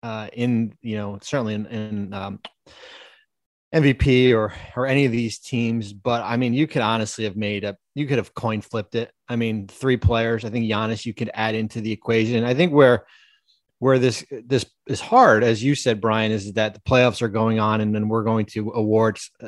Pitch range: 110-120 Hz